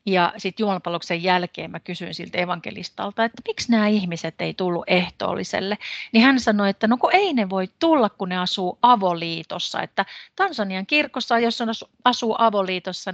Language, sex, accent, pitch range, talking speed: Finnish, female, native, 175-225 Hz, 165 wpm